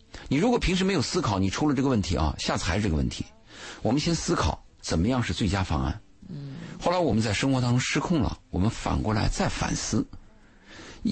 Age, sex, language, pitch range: 50-69, male, Chinese, 85-135 Hz